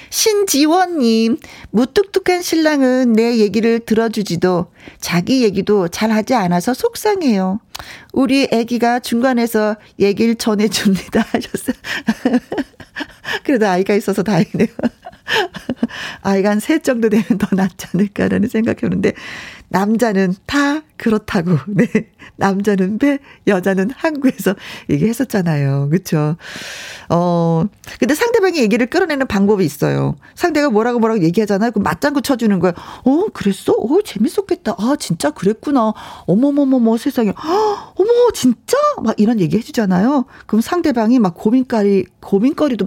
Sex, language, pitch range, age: female, Korean, 195-270 Hz, 40-59